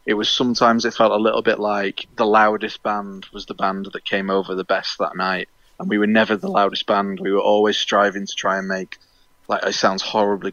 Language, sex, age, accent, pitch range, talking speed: English, male, 20-39, British, 95-110 Hz, 235 wpm